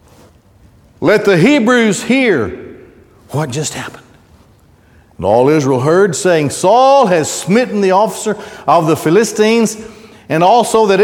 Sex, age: male, 60-79